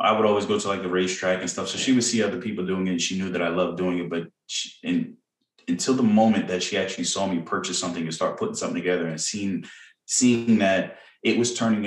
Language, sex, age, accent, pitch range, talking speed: English, male, 20-39, American, 85-110 Hz, 260 wpm